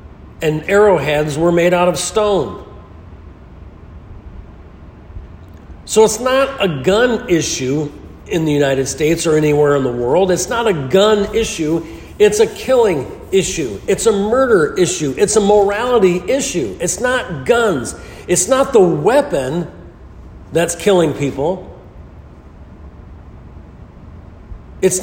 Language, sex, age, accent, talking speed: English, male, 50-69, American, 120 wpm